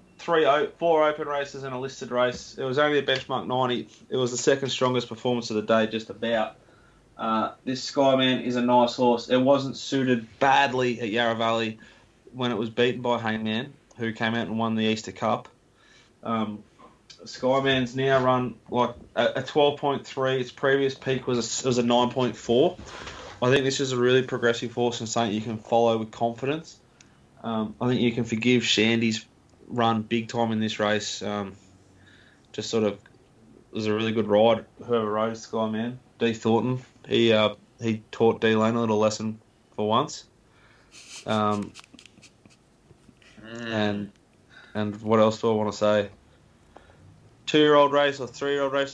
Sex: male